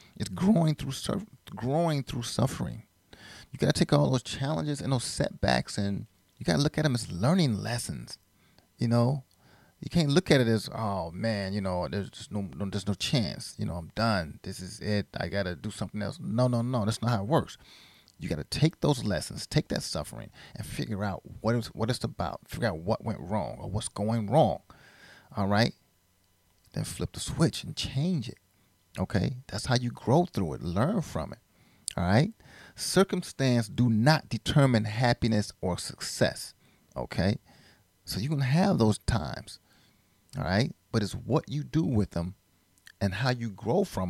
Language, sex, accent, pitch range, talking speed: English, male, American, 100-140 Hz, 190 wpm